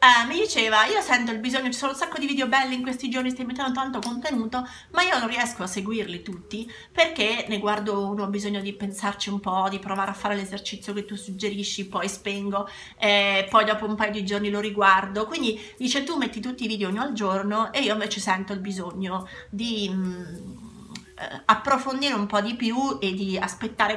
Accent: native